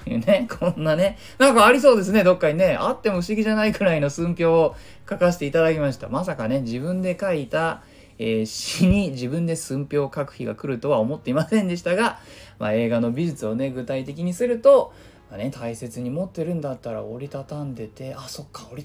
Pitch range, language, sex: 120-175 Hz, Japanese, male